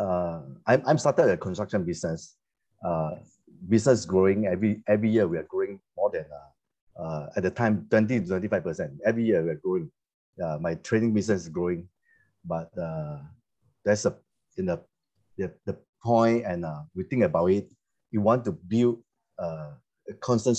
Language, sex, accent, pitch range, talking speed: English, male, Malaysian, 95-125 Hz, 175 wpm